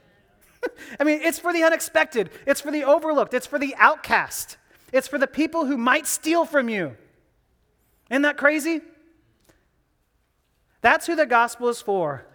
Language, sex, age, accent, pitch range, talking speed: English, male, 30-49, American, 180-255 Hz, 155 wpm